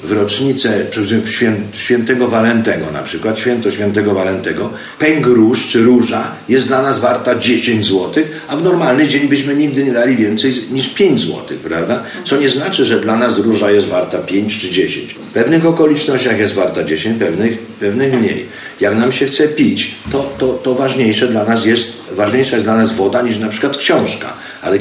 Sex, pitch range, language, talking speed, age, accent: male, 110-140 Hz, Polish, 170 wpm, 50-69, native